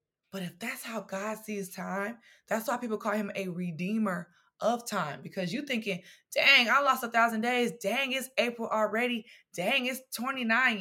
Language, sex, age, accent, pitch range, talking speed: English, female, 20-39, American, 205-270 Hz, 180 wpm